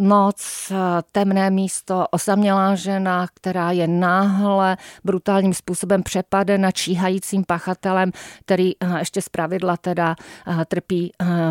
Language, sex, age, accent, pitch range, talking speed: Czech, female, 40-59, native, 170-195 Hz, 95 wpm